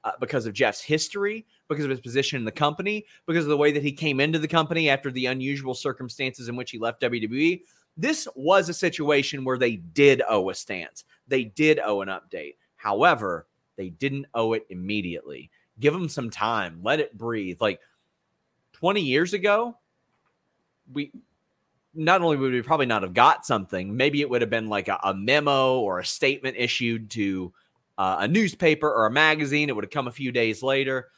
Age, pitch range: 30-49, 115-150 Hz